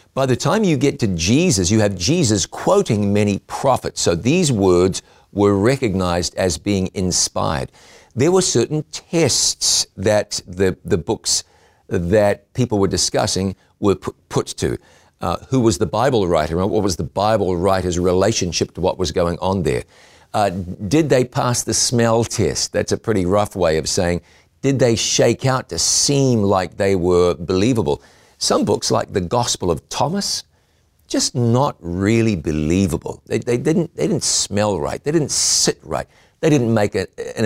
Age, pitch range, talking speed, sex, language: 50-69, 90-125 Hz, 170 wpm, male, English